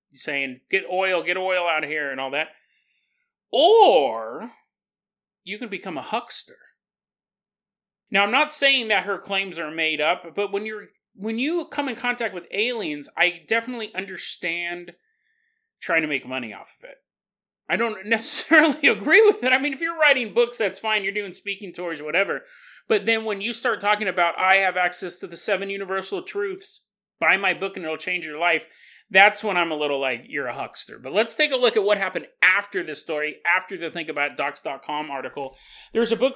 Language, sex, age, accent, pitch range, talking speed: English, male, 30-49, American, 170-250 Hz, 195 wpm